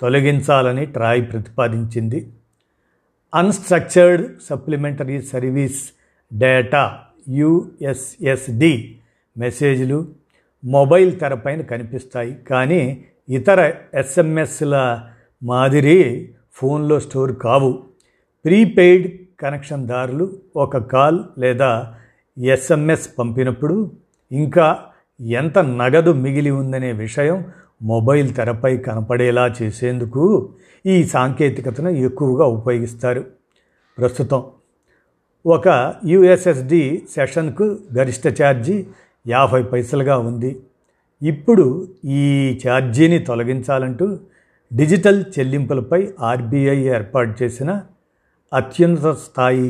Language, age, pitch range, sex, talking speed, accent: Telugu, 50-69, 125-160 Hz, male, 75 wpm, native